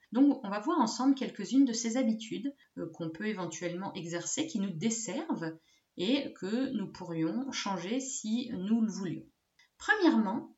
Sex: female